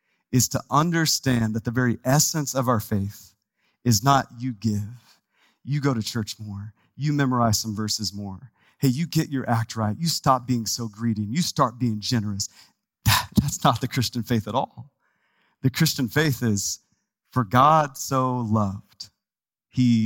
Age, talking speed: 30-49, 170 wpm